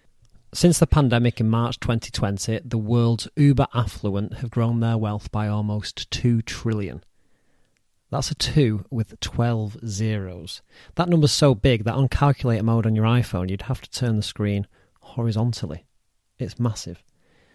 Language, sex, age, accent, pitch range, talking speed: English, male, 30-49, British, 105-130 Hz, 150 wpm